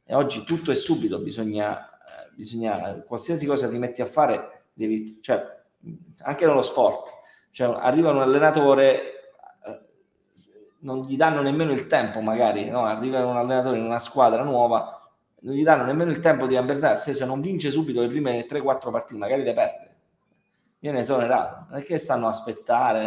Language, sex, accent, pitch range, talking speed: Italian, male, native, 120-170 Hz, 165 wpm